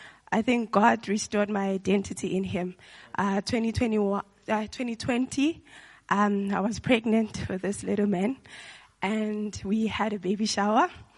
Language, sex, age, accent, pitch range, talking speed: English, female, 20-39, South African, 195-225 Hz, 130 wpm